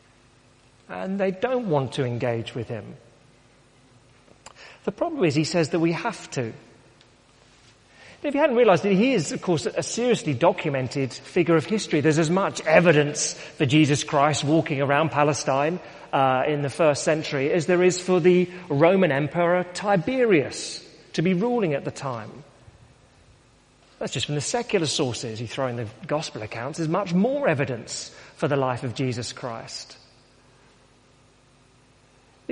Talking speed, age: 155 wpm, 40-59